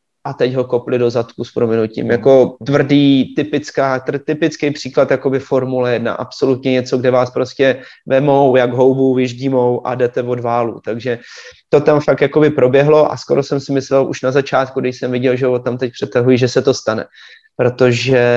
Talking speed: 180 wpm